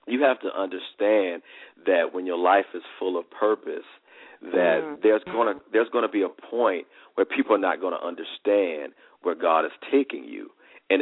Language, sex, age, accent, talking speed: English, male, 50-69, American, 175 wpm